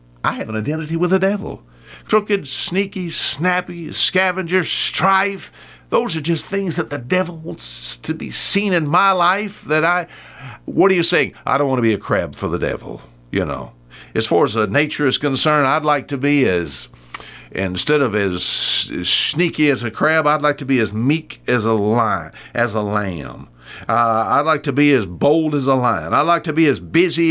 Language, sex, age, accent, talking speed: English, male, 60-79, American, 200 wpm